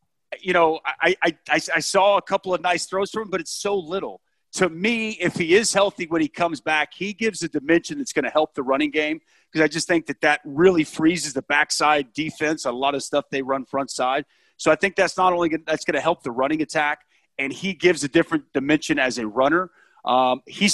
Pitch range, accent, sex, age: 150-190 Hz, American, male, 40-59